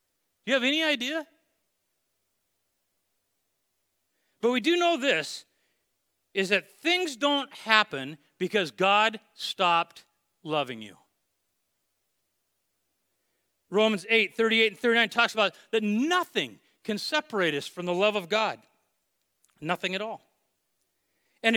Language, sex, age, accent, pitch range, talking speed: English, male, 40-59, American, 190-275 Hz, 115 wpm